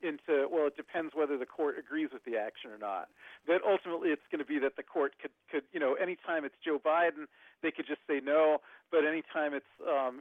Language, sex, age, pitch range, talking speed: English, male, 40-59, 140-175 Hz, 230 wpm